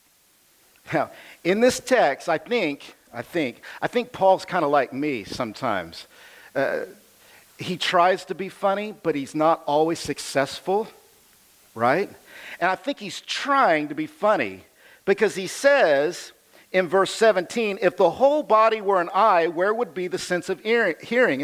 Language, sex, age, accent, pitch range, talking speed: English, male, 50-69, American, 185-255 Hz, 155 wpm